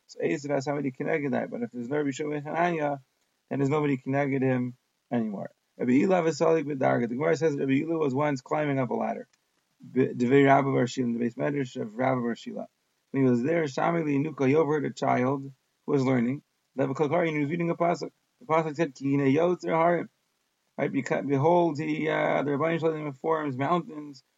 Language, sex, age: English, male, 30-49